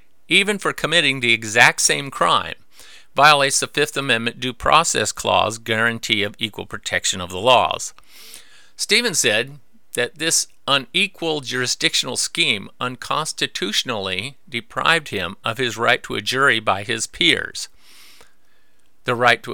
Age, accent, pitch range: 50-69, American, 105-135 Hz